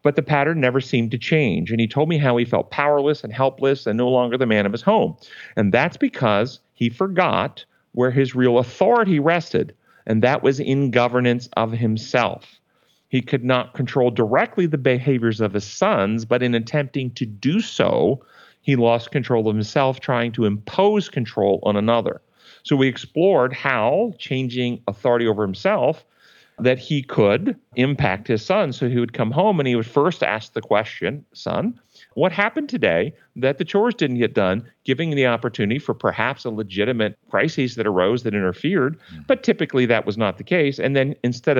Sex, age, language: male, 40-59, English